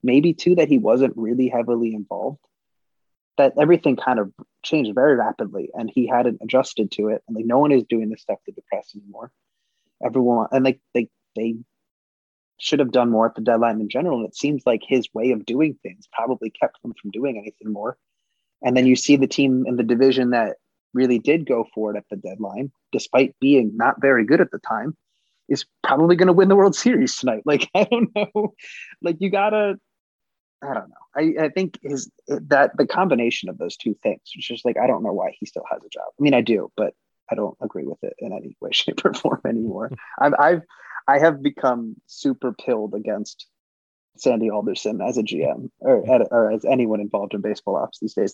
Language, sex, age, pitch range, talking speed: English, male, 30-49, 115-165 Hz, 215 wpm